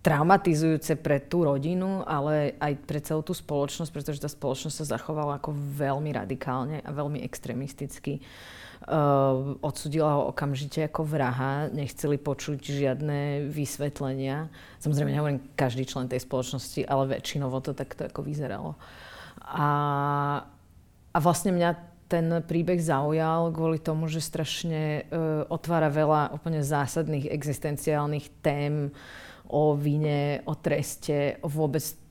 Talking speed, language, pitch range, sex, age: 125 wpm, Czech, 135-155 Hz, female, 30-49